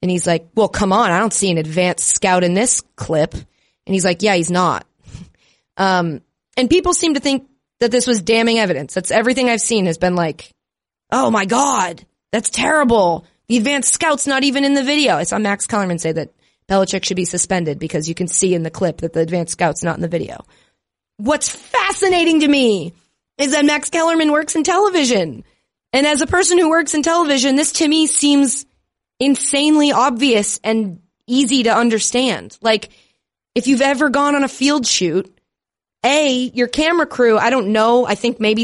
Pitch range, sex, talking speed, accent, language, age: 190-275 Hz, female, 195 wpm, American, English, 30-49